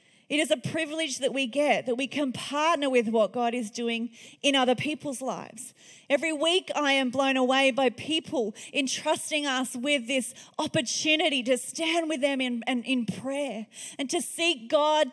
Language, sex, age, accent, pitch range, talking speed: English, female, 30-49, Australian, 245-295 Hz, 180 wpm